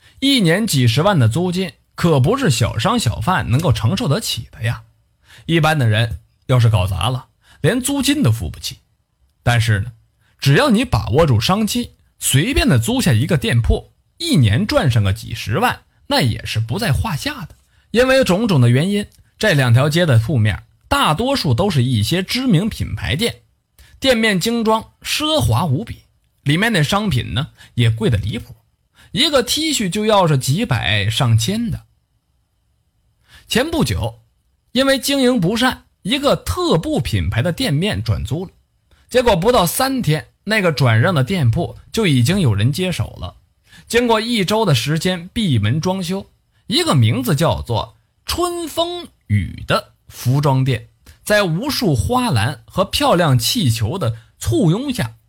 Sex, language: male, Chinese